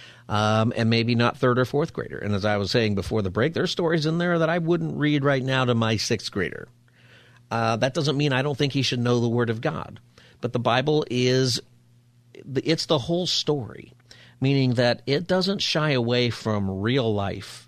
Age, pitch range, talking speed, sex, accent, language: 50-69, 110-140 Hz, 210 wpm, male, American, English